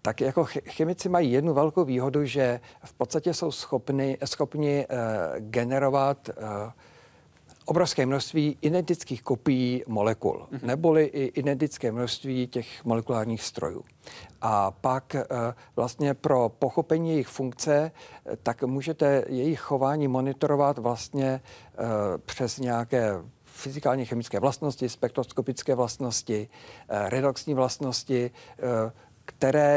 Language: Czech